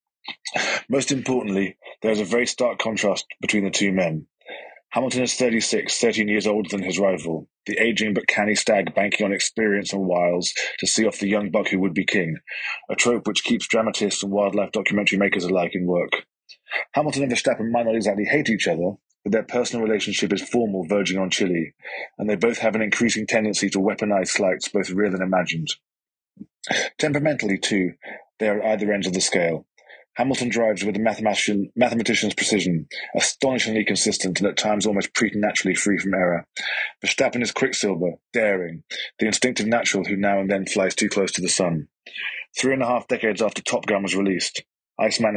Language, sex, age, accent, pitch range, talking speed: English, male, 20-39, British, 95-110 Hz, 185 wpm